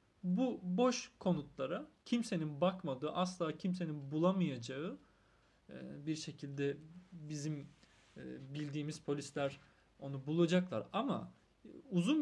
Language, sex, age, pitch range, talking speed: Turkish, male, 40-59, 145-185 Hz, 85 wpm